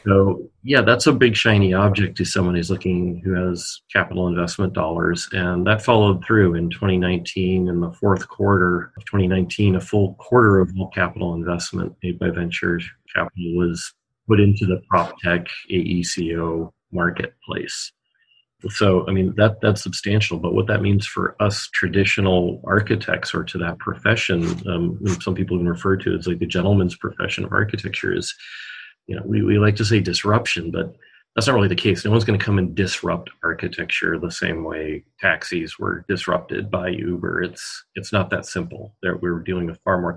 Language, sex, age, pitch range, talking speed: English, male, 30-49, 90-100 Hz, 180 wpm